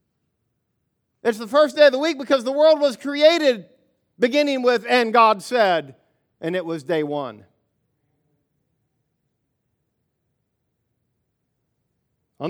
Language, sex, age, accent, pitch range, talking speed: English, male, 50-69, American, 150-250 Hz, 110 wpm